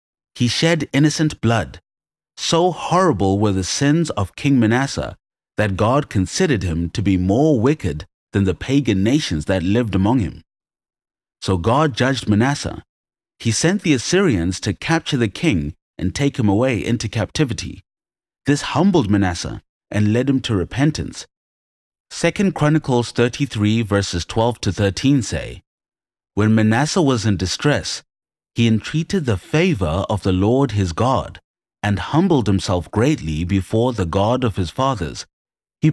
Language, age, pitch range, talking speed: English, 30-49, 95-140 Hz, 145 wpm